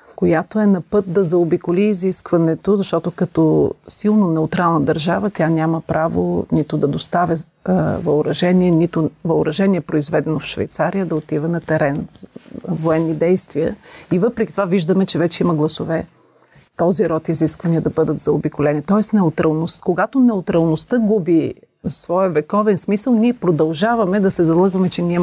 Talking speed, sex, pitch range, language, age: 145 wpm, female, 160-205 Hz, Bulgarian, 40-59